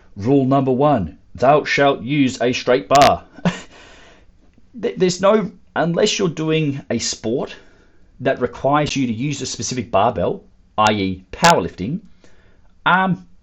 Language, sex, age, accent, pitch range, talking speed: English, male, 30-49, Australian, 100-145 Hz, 120 wpm